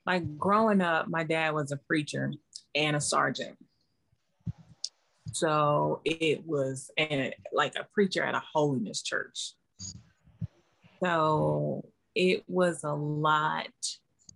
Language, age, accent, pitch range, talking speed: English, 30-49, American, 140-160 Hz, 115 wpm